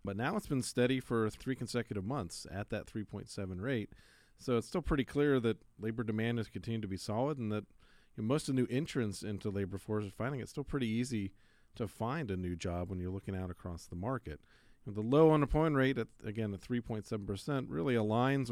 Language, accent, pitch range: English, American, 100-125 Hz